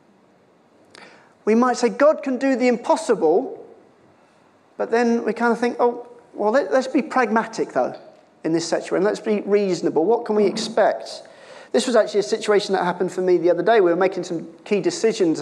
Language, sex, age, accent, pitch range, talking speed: English, male, 40-59, British, 185-245 Hz, 185 wpm